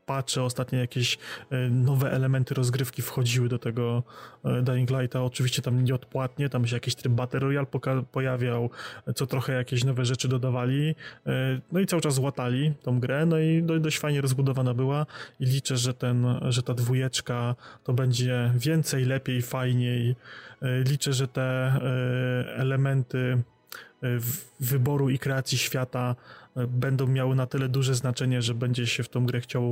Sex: male